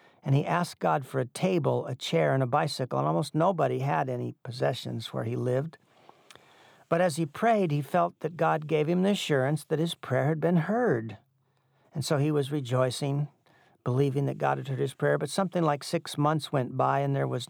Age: 50-69